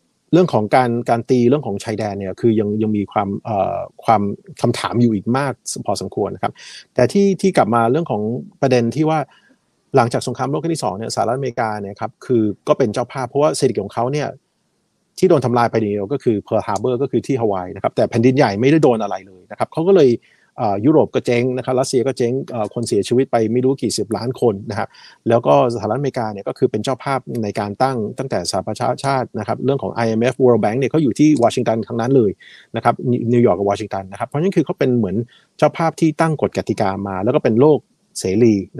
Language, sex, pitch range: Thai, male, 110-145 Hz